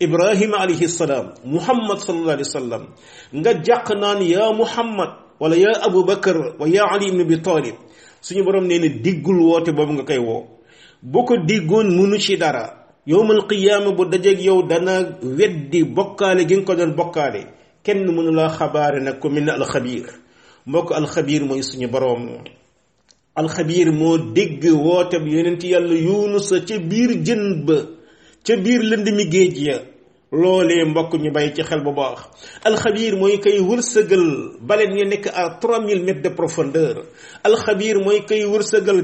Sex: male